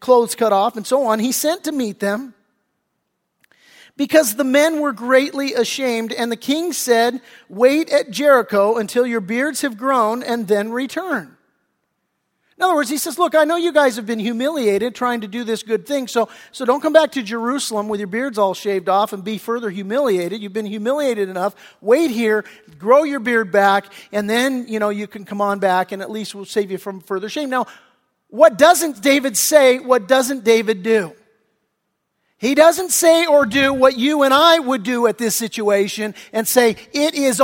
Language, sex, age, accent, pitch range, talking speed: English, male, 40-59, American, 220-295 Hz, 195 wpm